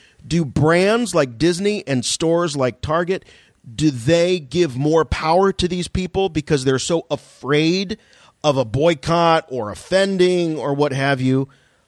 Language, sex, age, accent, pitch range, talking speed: English, male, 40-59, American, 140-190 Hz, 145 wpm